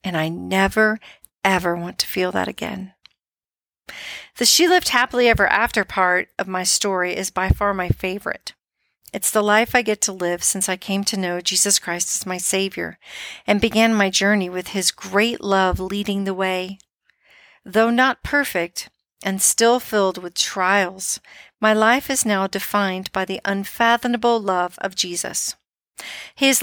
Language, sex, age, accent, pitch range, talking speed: English, female, 50-69, American, 190-225 Hz, 160 wpm